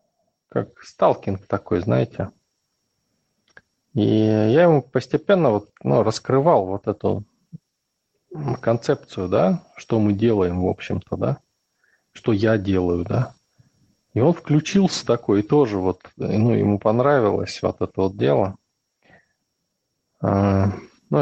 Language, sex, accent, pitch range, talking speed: Russian, male, native, 100-130 Hz, 115 wpm